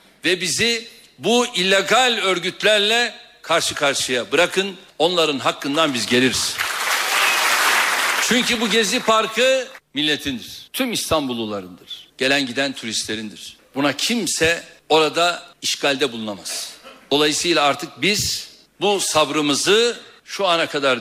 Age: 60-79